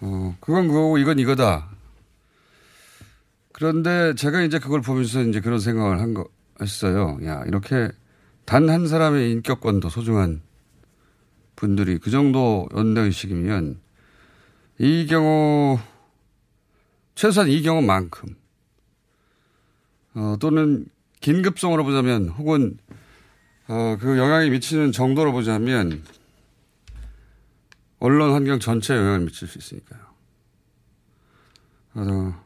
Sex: male